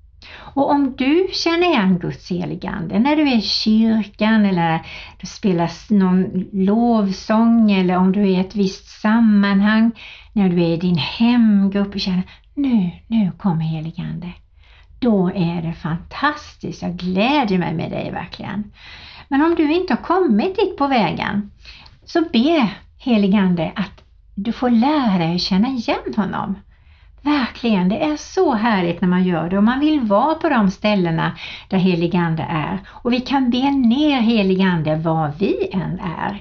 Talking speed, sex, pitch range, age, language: 160 wpm, female, 175-230 Hz, 60-79, Swedish